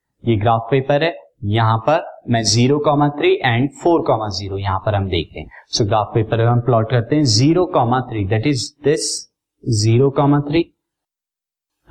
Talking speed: 150 wpm